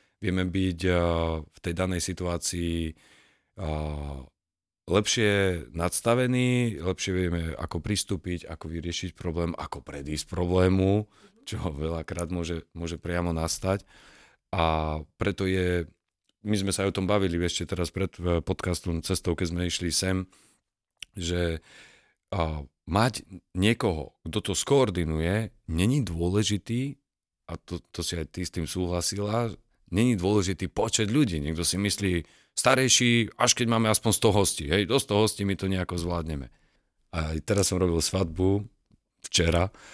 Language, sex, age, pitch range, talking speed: Slovak, male, 40-59, 85-105 Hz, 135 wpm